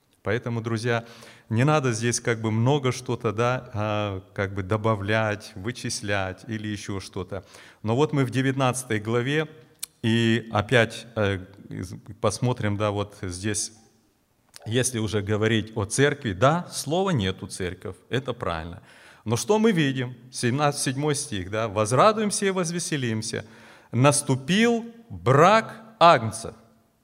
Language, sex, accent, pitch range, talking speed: Russian, male, native, 110-145 Hz, 120 wpm